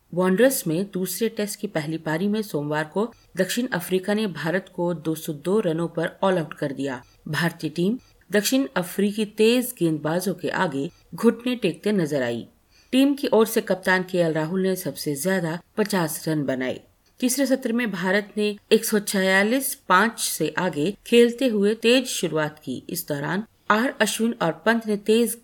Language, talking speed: Hindi, 165 wpm